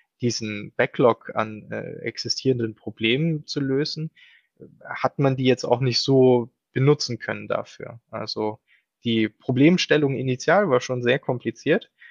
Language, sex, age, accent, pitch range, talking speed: German, male, 20-39, German, 110-130 Hz, 130 wpm